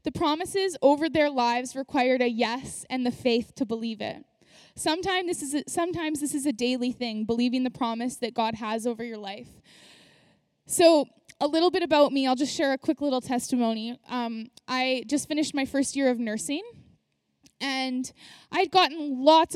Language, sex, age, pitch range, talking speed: English, female, 10-29, 245-305 Hz, 170 wpm